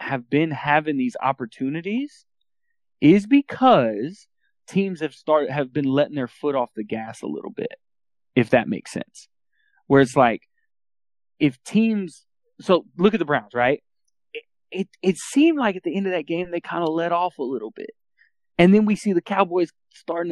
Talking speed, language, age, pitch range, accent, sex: 185 wpm, English, 20-39, 135-195 Hz, American, male